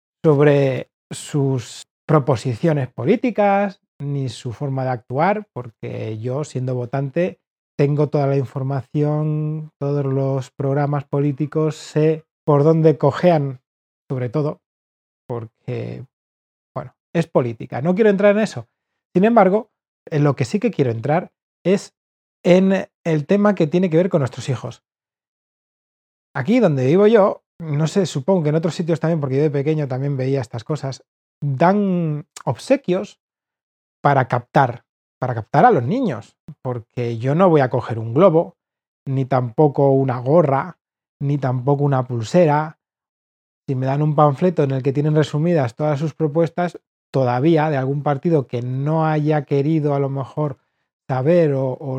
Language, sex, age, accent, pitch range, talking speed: Spanish, male, 30-49, Spanish, 130-165 Hz, 150 wpm